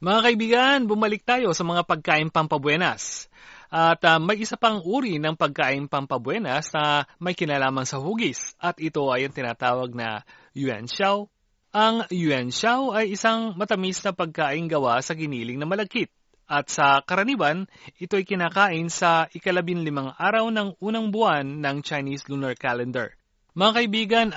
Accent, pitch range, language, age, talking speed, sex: native, 140-210 Hz, Filipino, 30-49, 150 wpm, male